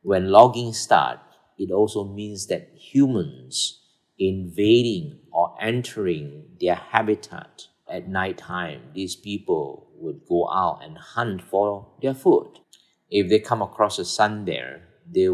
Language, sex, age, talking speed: English, male, 50-69, 135 wpm